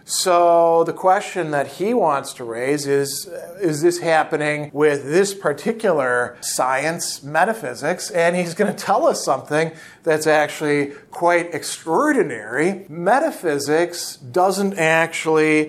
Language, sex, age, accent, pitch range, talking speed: English, male, 40-59, American, 145-185 Hz, 120 wpm